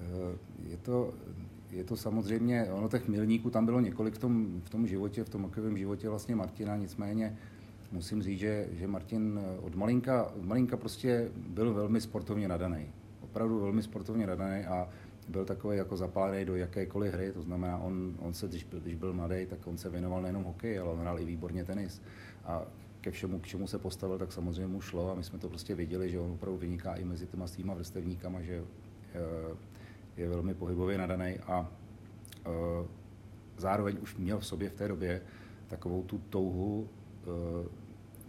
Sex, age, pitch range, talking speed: male, 40-59, 90-105 Hz, 180 wpm